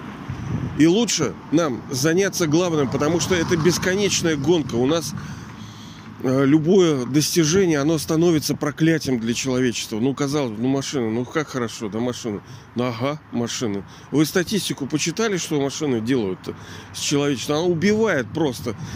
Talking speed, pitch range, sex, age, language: 135 wpm, 120-165 Hz, male, 40-59, Russian